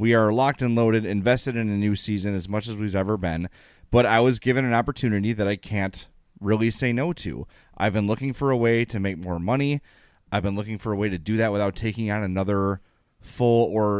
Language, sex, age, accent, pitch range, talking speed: English, male, 30-49, American, 100-130 Hz, 230 wpm